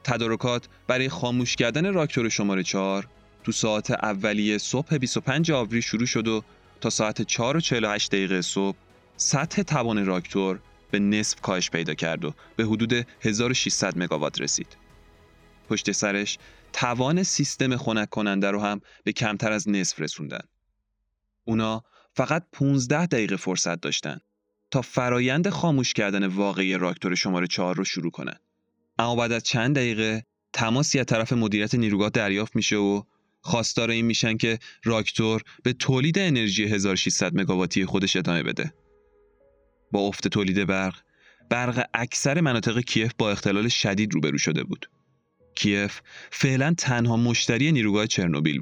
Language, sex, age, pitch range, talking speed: Persian, male, 20-39, 100-125 Hz, 140 wpm